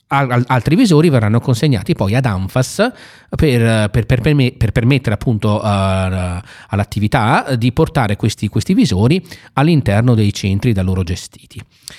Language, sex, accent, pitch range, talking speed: Italian, male, native, 105-135 Hz, 135 wpm